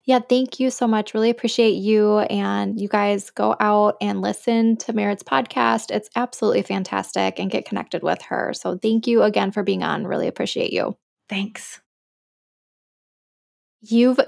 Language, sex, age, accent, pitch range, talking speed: English, female, 10-29, American, 200-245 Hz, 160 wpm